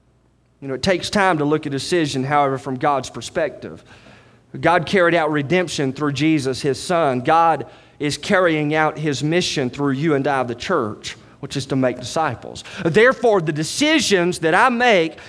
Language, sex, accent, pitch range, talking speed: English, male, American, 140-205 Hz, 180 wpm